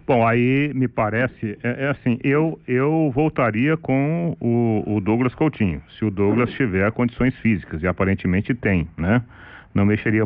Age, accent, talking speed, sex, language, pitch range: 40-59, Brazilian, 160 wpm, male, Portuguese, 100-130 Hz